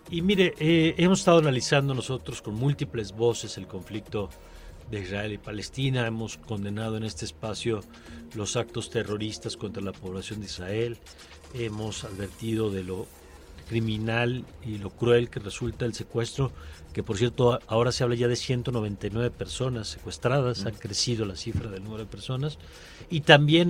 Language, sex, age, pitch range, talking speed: Spanish, male, 40-59, 95-120 Hz, 155 wpm